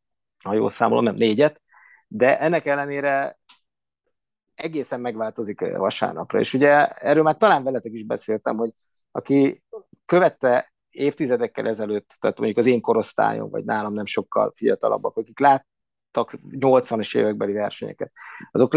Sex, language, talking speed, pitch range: male, Hungarian, 130 wpm, 115-165 Hz